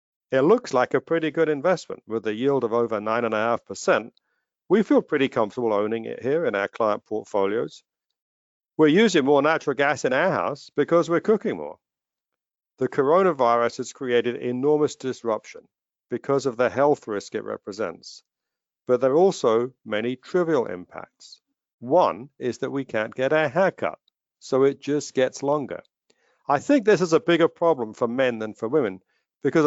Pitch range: 120-165 Hz